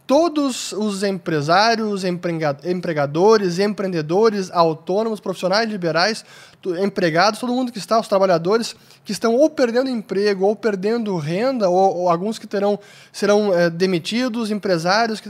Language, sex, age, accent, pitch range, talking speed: Portuguese, male, 20-39, Brazilian, 185-230 Hz, 120 wpm